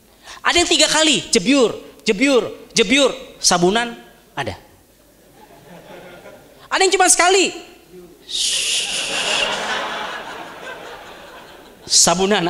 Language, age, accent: English, 30-49, Indonesian